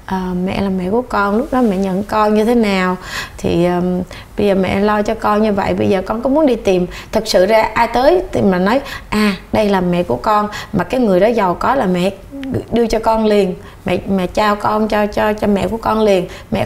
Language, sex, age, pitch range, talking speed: Vietnamese, female, 20-39, 195-240 Hz, 250 wpm